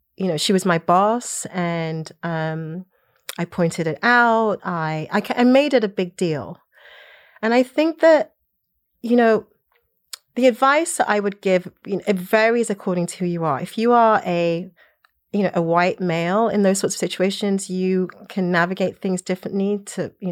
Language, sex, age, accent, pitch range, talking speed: English, female, 30-49, British, 170-205 Hz, 185 wpm